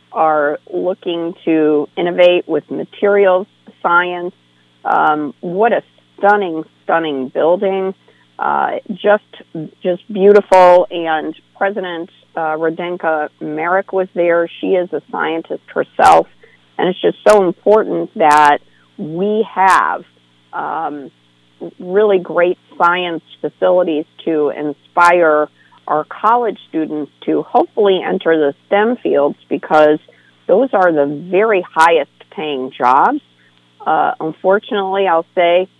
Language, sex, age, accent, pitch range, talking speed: English, female, 50-69, American, 145-180 Hz, 110 wpm